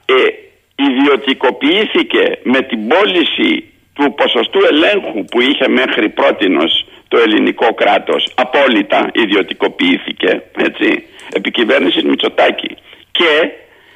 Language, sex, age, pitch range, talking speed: Greek, male, 60-79, 270-425 Hz, 90 wpm